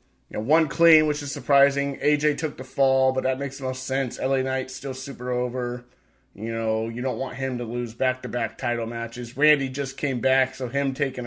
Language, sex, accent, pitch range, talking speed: English, male, American, 125-160 Hz, 215 wpm